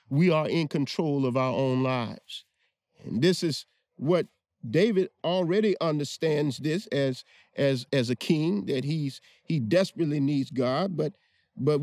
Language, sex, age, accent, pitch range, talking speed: English, male, 50-69, American, 145-190 Hz, 145 wpm